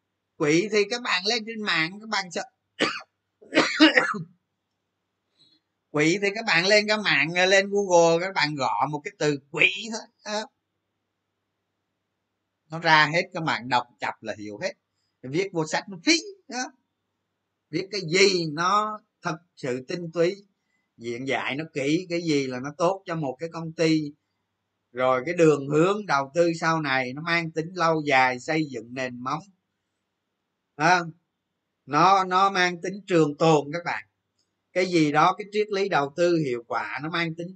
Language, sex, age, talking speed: Vietnamese, male, 30-49, 170 wpm